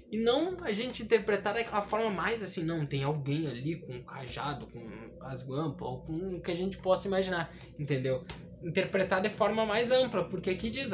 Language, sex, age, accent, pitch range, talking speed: Portuguese, male, 20-39, Brazilian, 170-255 Hz, 205 wpm